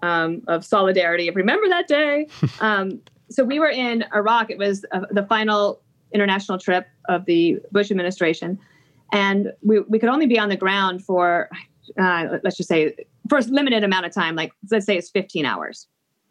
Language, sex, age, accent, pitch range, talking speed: English, female, 30-49, American, 185-235 Hz, 185 wpm